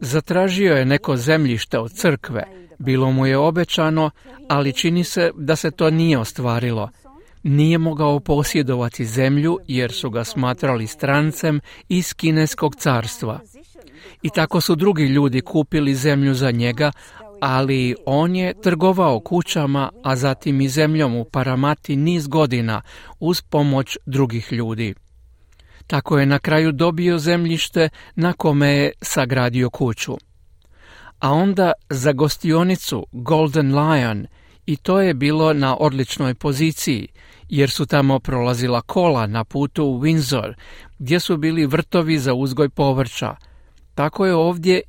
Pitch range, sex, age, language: 130-160 Hz, male, 50-69, Croatian